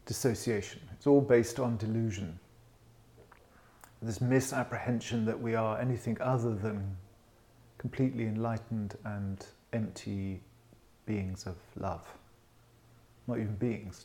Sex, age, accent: male, 40-59, British